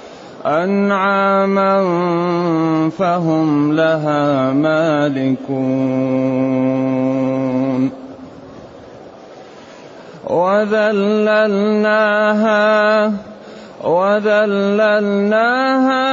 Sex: male